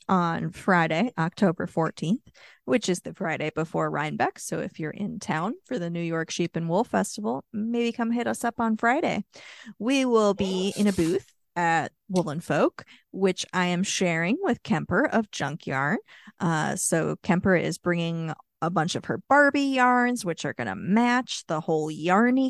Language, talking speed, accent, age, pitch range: English, 175 wpm, American, 30-49, 170-245 Hz